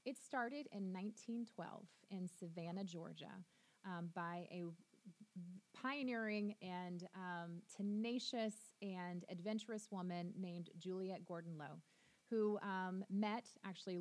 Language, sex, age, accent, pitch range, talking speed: English, female, 20-39, American, 170-205 Hz, 105 wpm